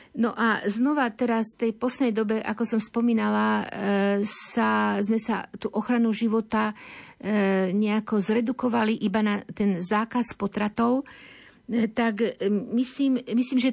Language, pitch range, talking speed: Slovak, 200-230 Hz, 120 wpm